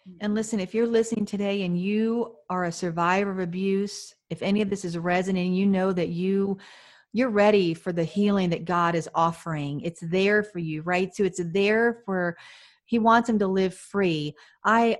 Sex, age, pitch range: female, 40-59, 180-220 Hz